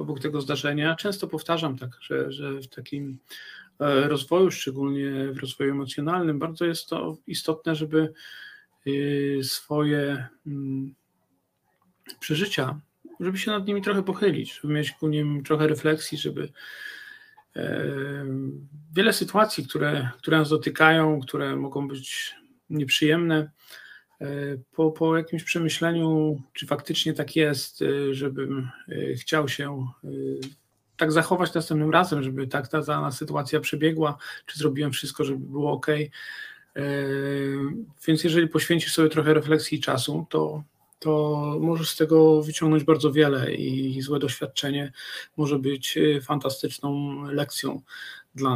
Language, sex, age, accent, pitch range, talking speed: Polish, male, 40-59, native, 140-160 Hz, 120 wpm